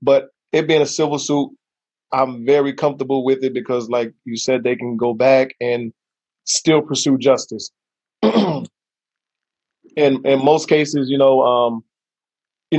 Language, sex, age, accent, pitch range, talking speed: English, male, 20-39, American, 130-155 Hz, 150 wpm